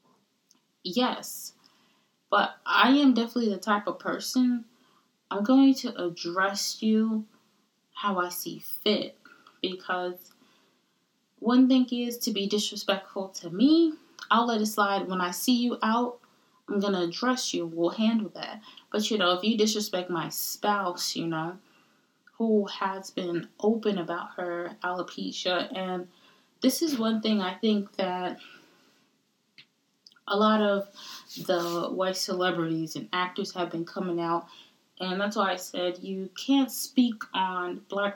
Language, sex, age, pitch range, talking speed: English, female, 20-39, 180-230 Hz, 145 wpm